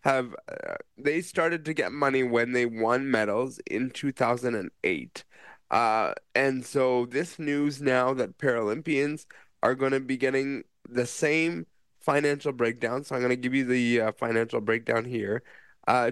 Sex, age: male, 20-39